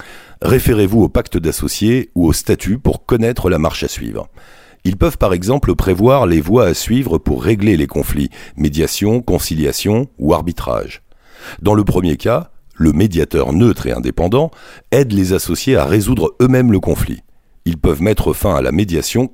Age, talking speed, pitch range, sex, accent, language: 50-69, 170 wpm, 85-125 Hz, male, French, French